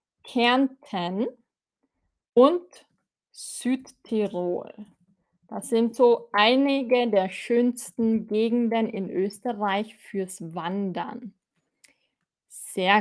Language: German